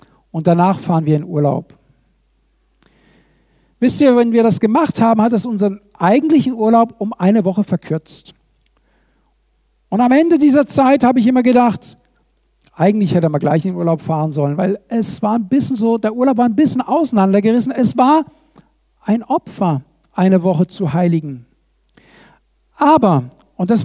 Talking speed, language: 155 wpm, German